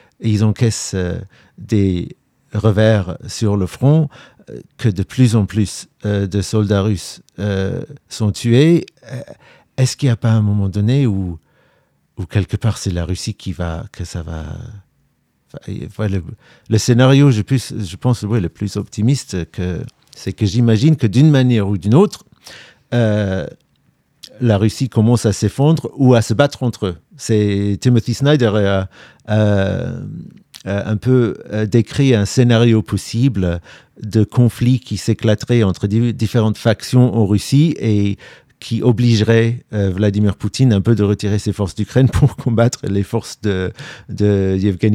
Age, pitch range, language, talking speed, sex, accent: 50-69, 100-120 Hz, French, 160 wpm, male, French